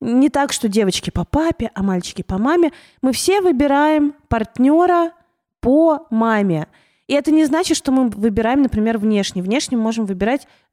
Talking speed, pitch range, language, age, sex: 155 wpm, 210-285 Hz, Russian, 20-39, female